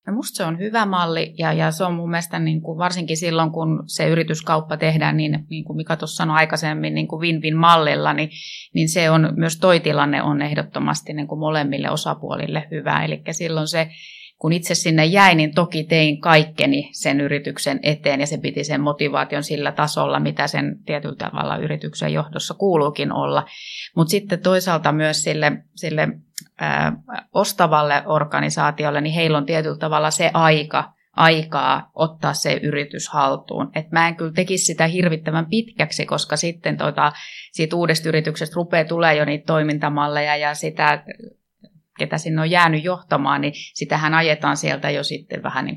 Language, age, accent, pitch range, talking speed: Finnish, 30-49, native, 150-165 Hz, 165 wpm